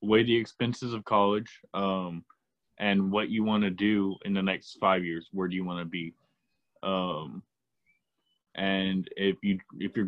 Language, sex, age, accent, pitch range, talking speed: English, male, 20-39, American, 95-115 Hz, 160 wpm